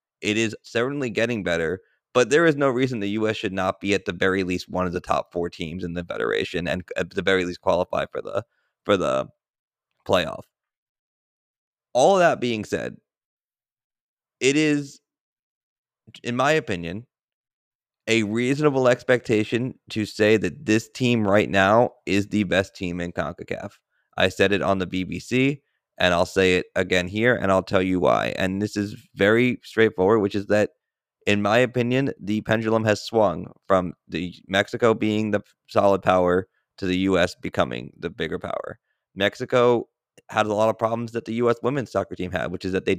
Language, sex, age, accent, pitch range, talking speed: English, male, 30-49, American, 95-120 Hz, 180 wpm